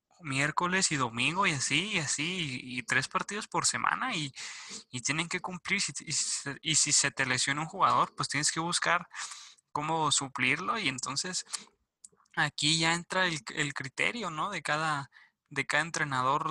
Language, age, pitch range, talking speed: Spanish, 20-39, 140-160 Hz, 170 wpm